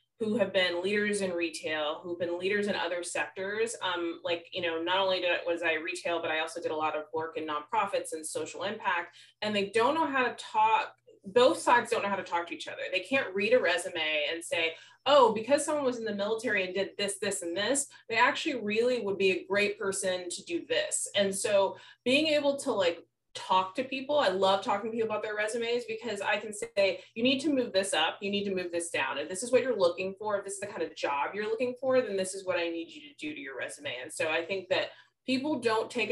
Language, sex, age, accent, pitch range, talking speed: English, female, 20-39, American, 175-245 Hz, 255 wpm